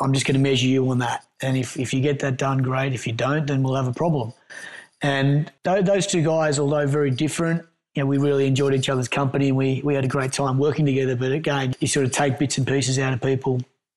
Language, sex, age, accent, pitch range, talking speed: English, male, 30-49, Australian, 135-155 Hz, 260 wpm